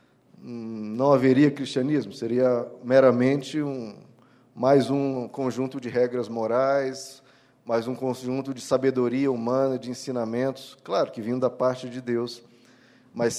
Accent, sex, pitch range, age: Brazilian, male, 125-165 Hz, 20-39